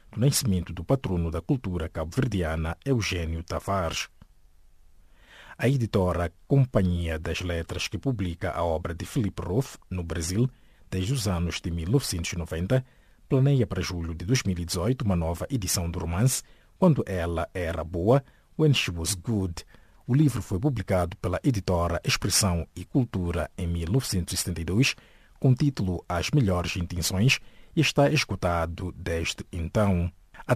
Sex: male